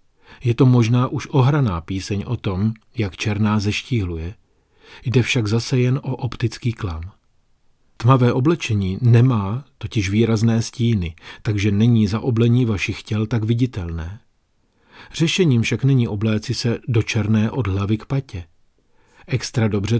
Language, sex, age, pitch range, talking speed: Czech, male, 40-59, 100-125 Hz, 135 wpm